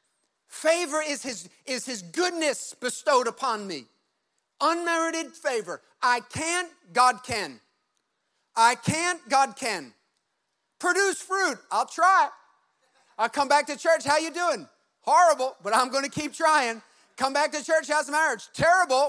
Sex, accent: male, American